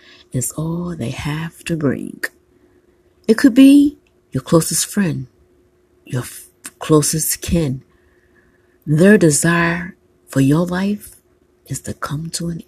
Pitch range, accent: 135-180 Hz, American